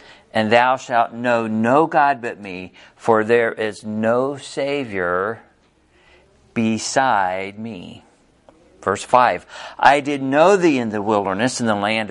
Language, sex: English, male